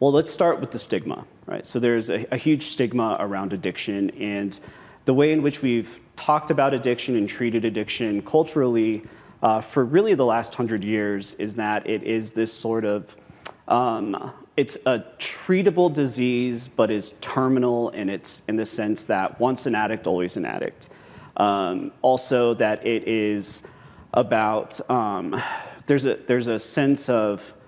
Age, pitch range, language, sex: 30-49, 105-130 Hz, English, male